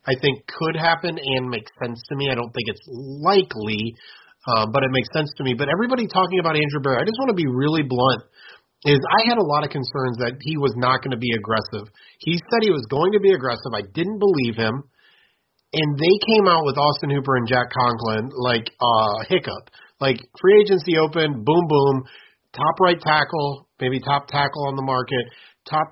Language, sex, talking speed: English, male, 210 wpm